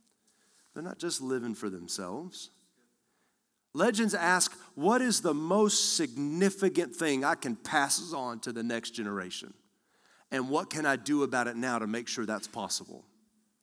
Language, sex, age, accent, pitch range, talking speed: English, male, 40-59, American, 160-205 Hz, 155 wpm